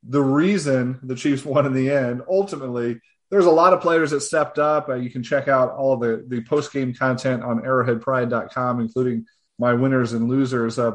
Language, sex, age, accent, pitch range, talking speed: English, male, 30-49, American, 125-150 Hz, 195 wpm